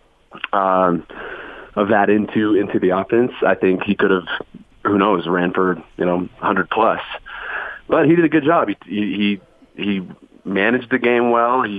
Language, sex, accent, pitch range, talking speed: English, male, American, 95-120 Hz, 175 wpm